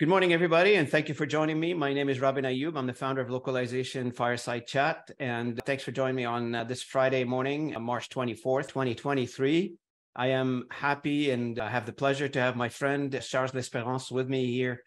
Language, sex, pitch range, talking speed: English, male, 125-140 Hz, 200 wpm